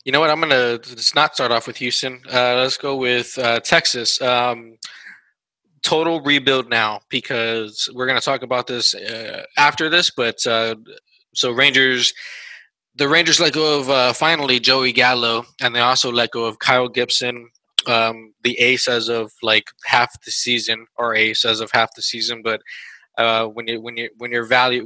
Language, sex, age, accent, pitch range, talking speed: English, male, 20-39, American, 115-135 Hz, 180 wpm